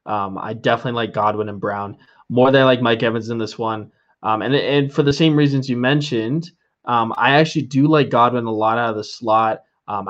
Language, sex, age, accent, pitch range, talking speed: English, male, 20-39, American, 110-135 Hz, 225 wpm